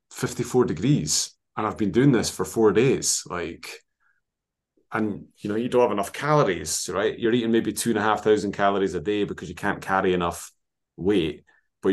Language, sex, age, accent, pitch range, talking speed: English, male, 30-49, British, 90-105 Hz, 190 wpm